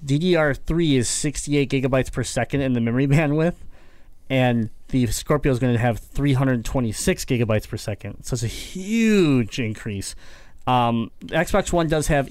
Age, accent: 30-49, American